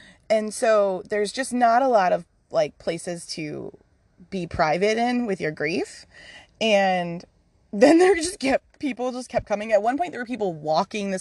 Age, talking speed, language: 20-39, 180 wpm, English